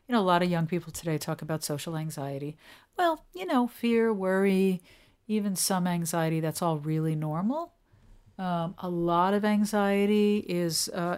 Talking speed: 165 wpm